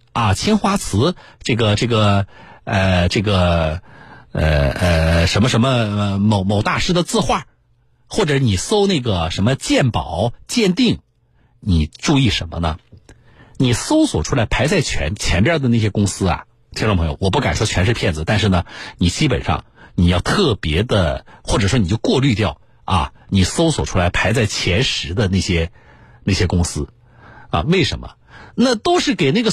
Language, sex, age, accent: Chinese, male, 50-69, native